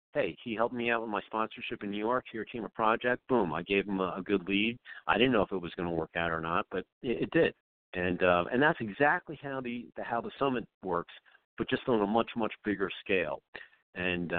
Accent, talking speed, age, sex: American, 250 wpm, 50-69, male